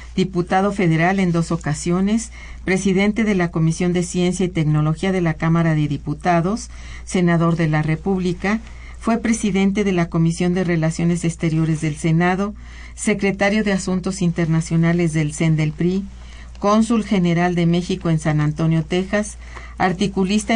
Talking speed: 145 wpm